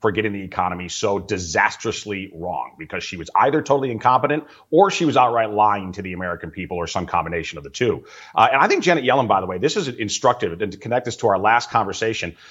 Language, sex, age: English, male, 30-49